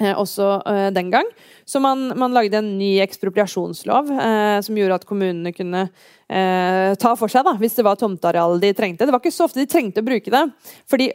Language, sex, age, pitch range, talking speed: English, female, 30-49, 195-235 Hz, 210 wpm